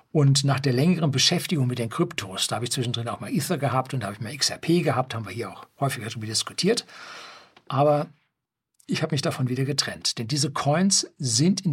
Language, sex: German, male